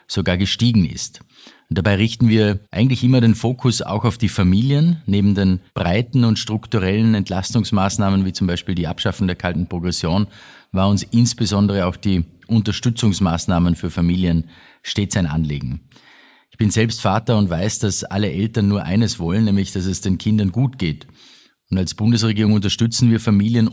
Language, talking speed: German, 160 wpm